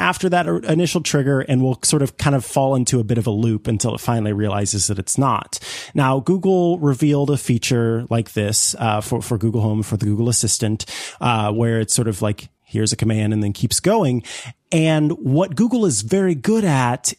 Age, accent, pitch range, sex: 30-49, American, 115-140 Hz, male